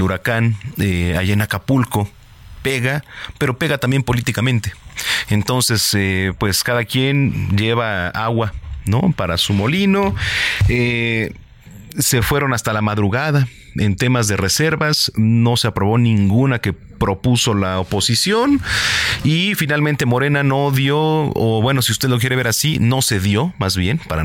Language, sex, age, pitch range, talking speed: Spanish, male, 40-59, 105-135 Hz, 145 wpm